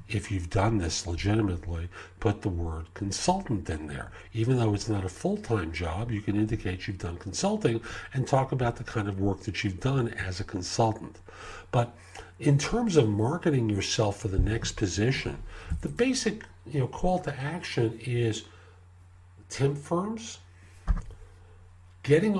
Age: 50-69